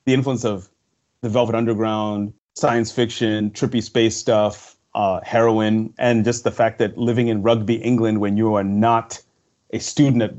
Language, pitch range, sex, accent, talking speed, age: English, 100-120 Hz, male, American, 170 wpm, 30-49